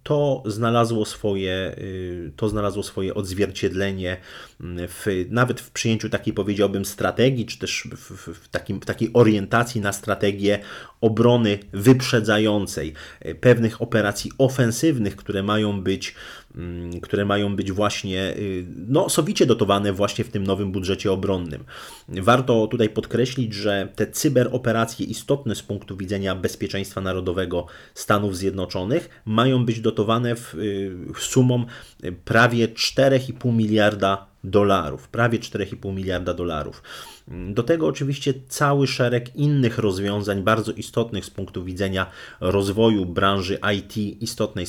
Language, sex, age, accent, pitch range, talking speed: Polish, male, 30-49, native, 95-115 Hz, 115 wpm